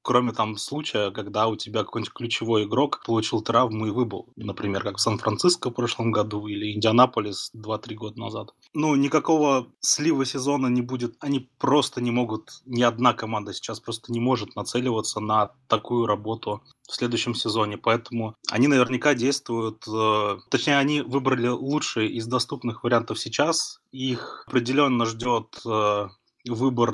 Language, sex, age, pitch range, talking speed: Russian, male, 20-39, 110-125 Hz, 150 wpm